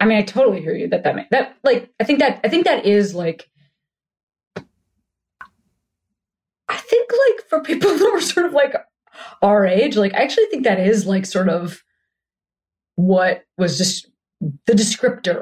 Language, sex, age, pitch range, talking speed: English, female, 20-39, 170-230 Hz, 170 wpm